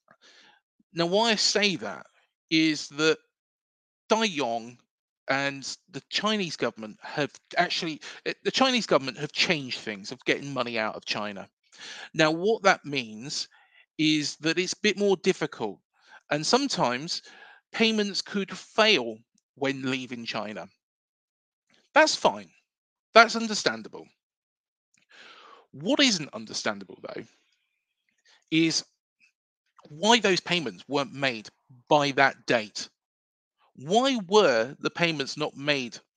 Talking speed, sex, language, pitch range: 115 wpm, male, English, 135-210 Hz